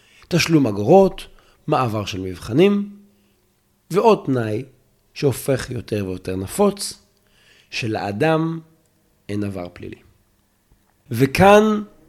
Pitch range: 105-155 Hz